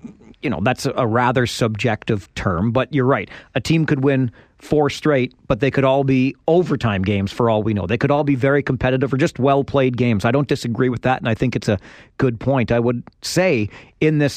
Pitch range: 110-135 Hz